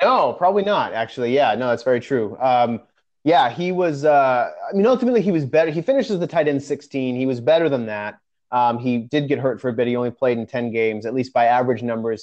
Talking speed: 245 wpm